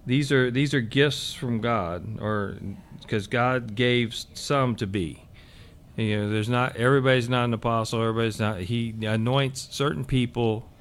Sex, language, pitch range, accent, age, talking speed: male, English, 105-125 Hz, American, 40-59, 155 wpm